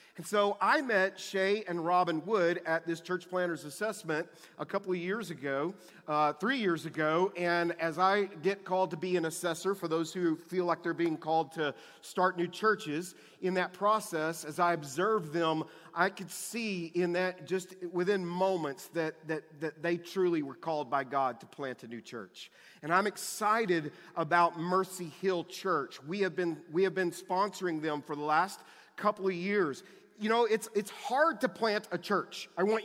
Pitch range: 170-200 Hz